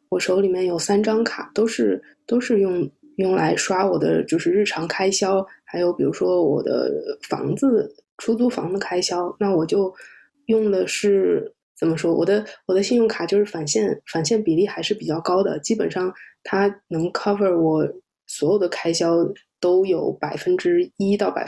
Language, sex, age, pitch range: Chinese, female, 20-39, 180-220 Hz